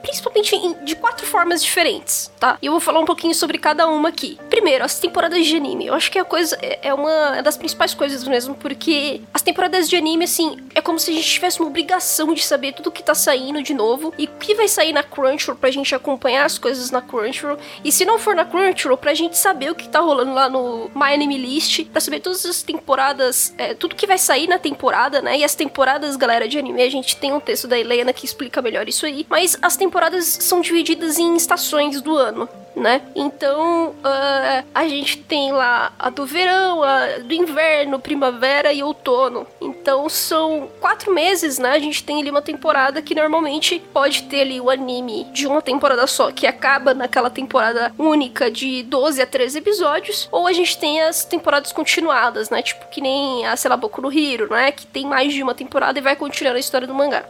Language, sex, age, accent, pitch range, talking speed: Portuguese, female, 10-29, Brazilian, 270-335 Hz, 215 wpm